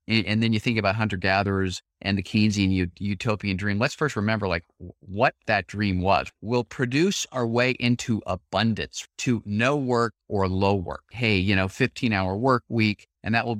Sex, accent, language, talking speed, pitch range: male, American, English, 175 wpm, 100-130 Hz